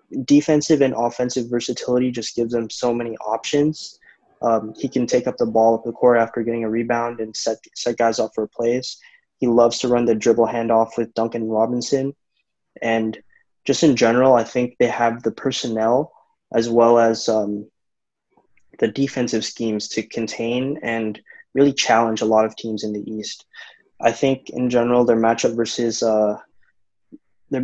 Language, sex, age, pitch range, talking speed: English, male, 20-39, 115-135 Hz, 170 wpm